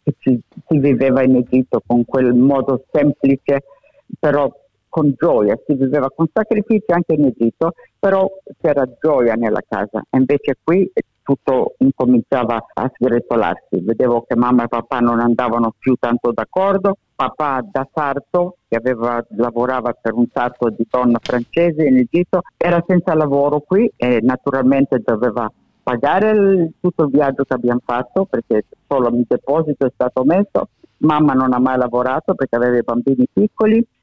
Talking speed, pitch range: 150 wpm, 125-155 Hz